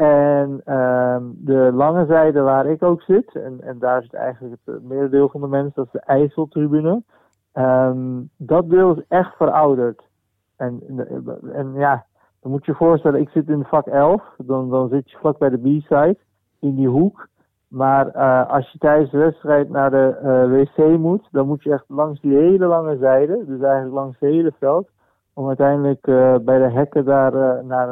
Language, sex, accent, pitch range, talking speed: Dutch, male, Dutch, 130-145 Hz, 190 wpm